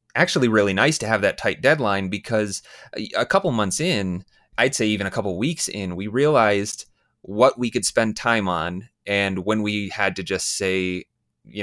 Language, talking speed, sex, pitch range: English, 185 wpm, male, 95-110 Hz